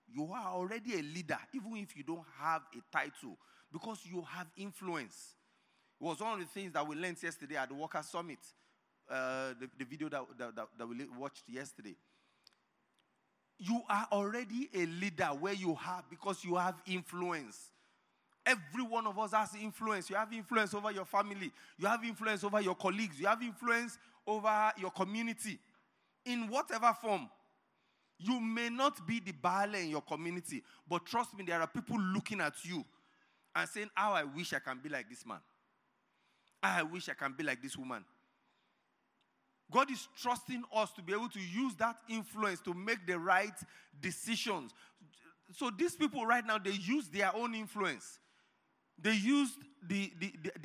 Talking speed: 170 wpm